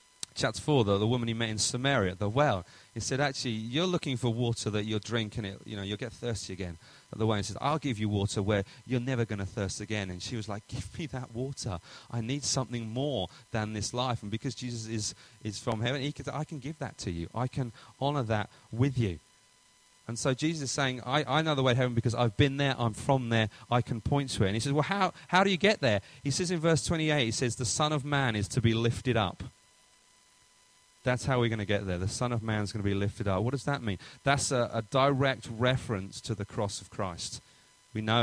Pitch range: 105-130 Hz